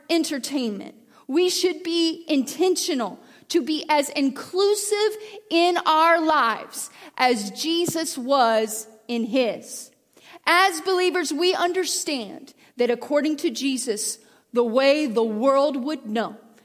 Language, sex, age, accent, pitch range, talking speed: English, female, 40-59, American, 235-335 Hz, 110 wpm